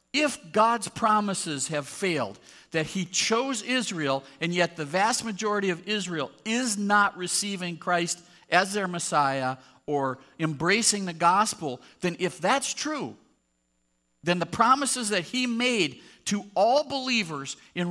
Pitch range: 145-205 Hz